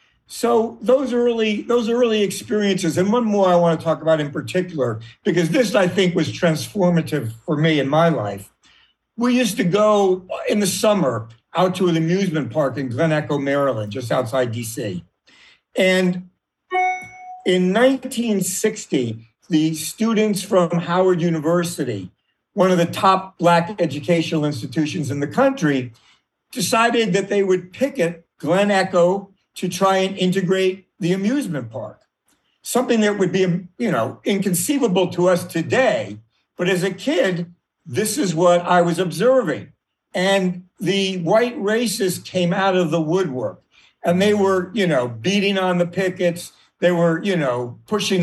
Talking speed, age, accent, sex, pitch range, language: 150 wpm, 50-69, American, male, 165-200 Hz, English